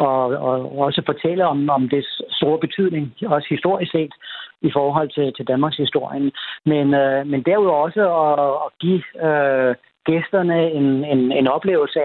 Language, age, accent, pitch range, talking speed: Danish, 60-79, native, 135-160 Hz, 160 wpm